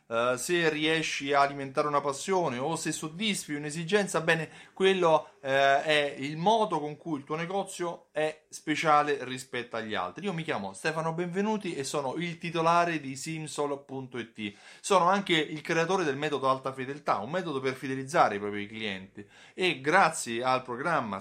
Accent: native